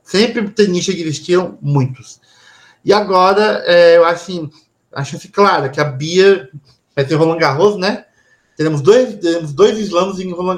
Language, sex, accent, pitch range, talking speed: Portuguese, male, Brazilian, 140-175 Hz, 160 wpm